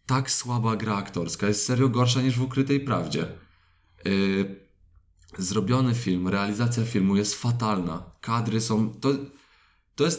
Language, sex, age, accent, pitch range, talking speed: Polish, male, 20-39, native, 95-120 Hz, 130 wpm